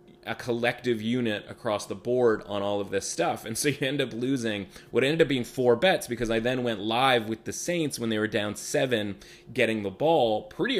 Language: English